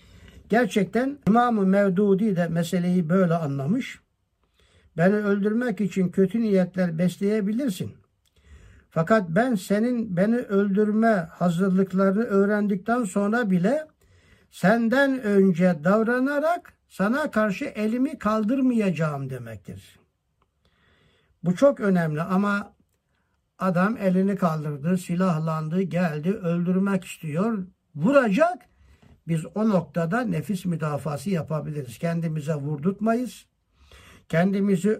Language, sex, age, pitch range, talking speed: Turkish, male, 60-79, 170-220 Hz, 85 wpm